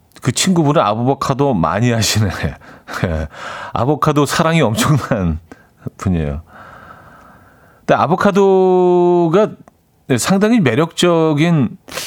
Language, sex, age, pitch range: Korean, male, 40-59, 95-150 Hz